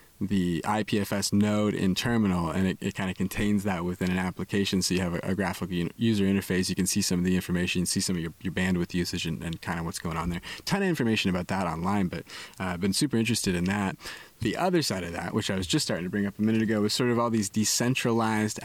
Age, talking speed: 20-39, 250 wpm